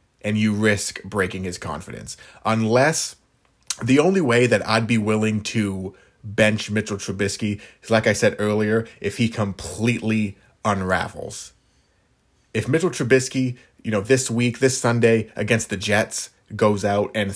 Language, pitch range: English, 100-115 Hz